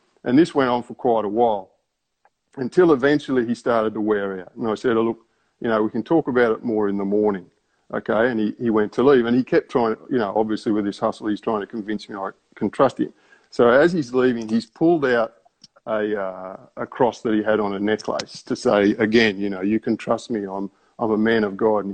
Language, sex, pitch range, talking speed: English, male, 105-125 Hz, 245 wpm